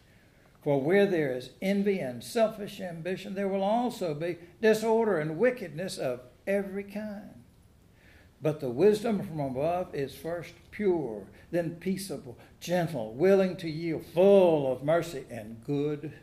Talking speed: 135 wpm